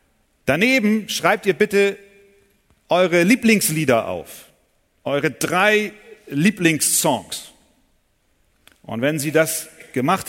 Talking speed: 85 wpm